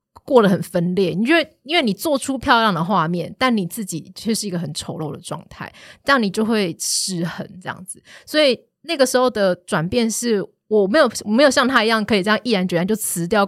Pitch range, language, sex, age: 175-220 Hz, Chinese, female, 20-39